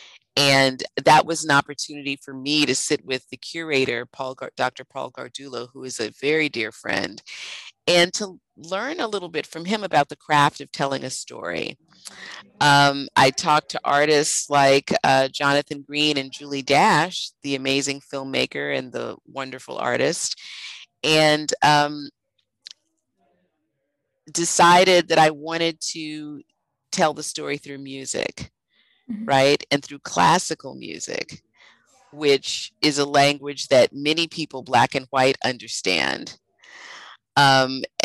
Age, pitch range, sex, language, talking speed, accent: 40-59, 135-155 Hz, female, English, 135 wpm, American